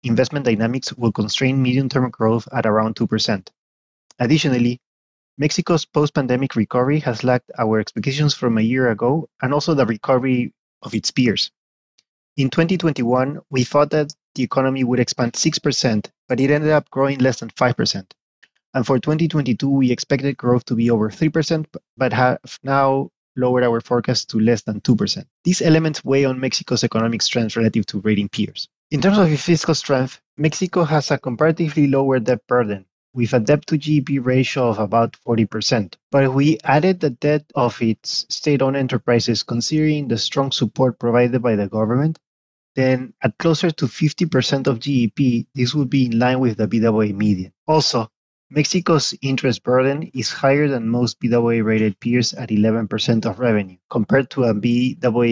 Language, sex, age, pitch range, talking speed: English, male, 20-39, 115-145 Hz, 165 wpm